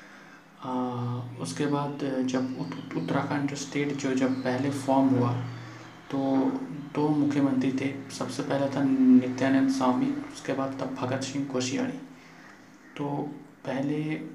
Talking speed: 120 wpm